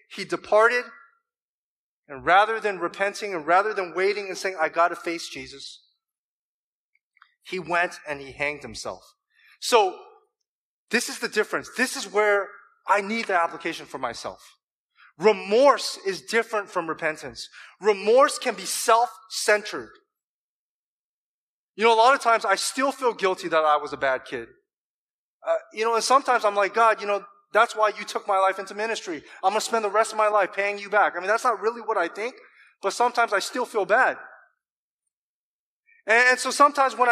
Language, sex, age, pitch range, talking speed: English, male, 30-49, 180-245 Hz, 180 wpm